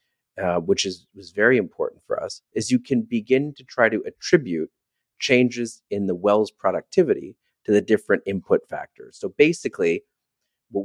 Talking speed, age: 160 wpm, 30-49